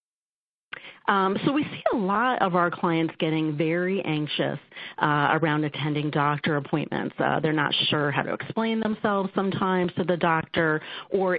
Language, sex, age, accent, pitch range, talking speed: English, female, 40-59, American, 155-185 Hz, 160 wpm